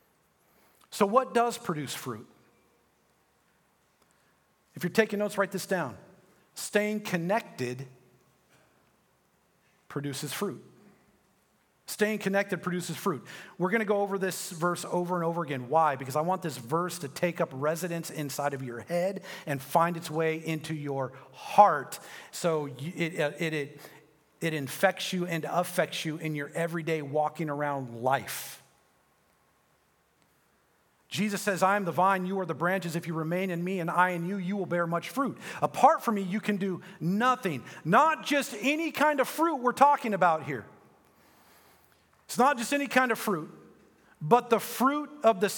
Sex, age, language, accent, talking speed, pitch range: male, 40-59, English, American, 155 wpm, 160-215 Hz